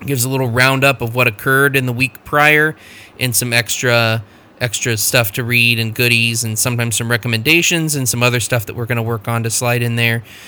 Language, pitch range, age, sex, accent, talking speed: English, 115-135 Hz, 20-39, male, American, 220 wpm